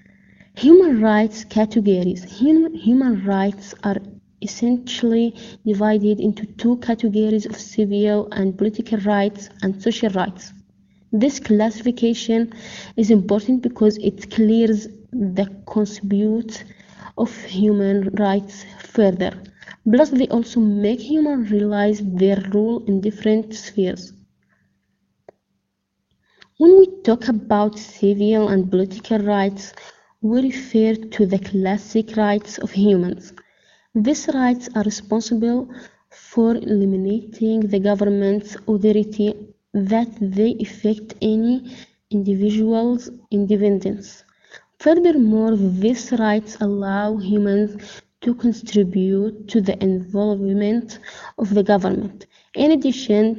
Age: 20-39